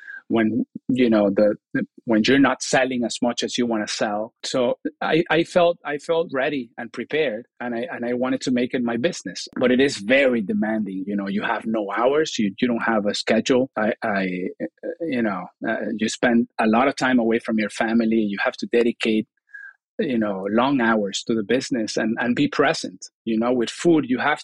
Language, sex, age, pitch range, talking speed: English, male, 30-49, 115-150 Hz, 215 wpm